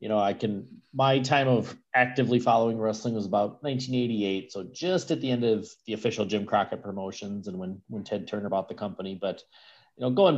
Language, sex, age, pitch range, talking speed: English, male, 40-59, 100-120 Hz, 210 wpm